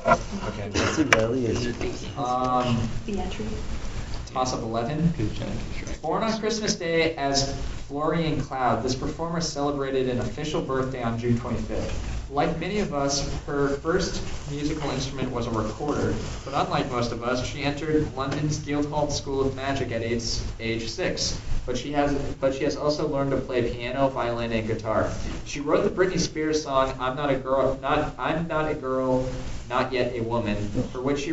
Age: 20-39